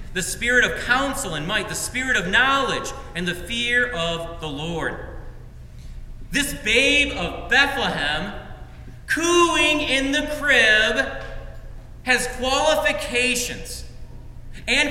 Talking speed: 110 wpm